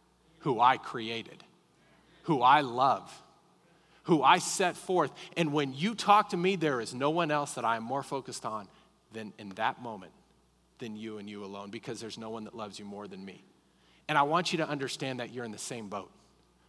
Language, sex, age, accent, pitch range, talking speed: English, male, 40-59, American, 115-155 Hz, 210 wpm